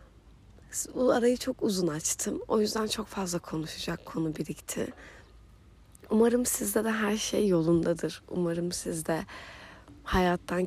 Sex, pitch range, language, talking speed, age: female, 165-200 Hz, Turkish, 120 wpm, 30-49